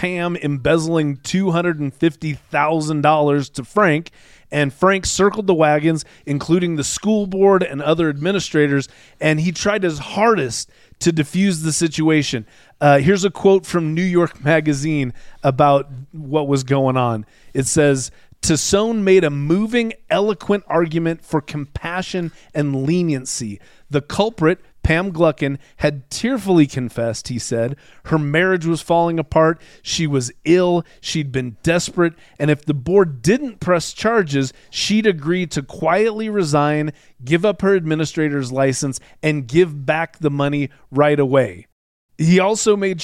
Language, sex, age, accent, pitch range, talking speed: English, male, 30-49, American, 145-180 Hz, 145 wpm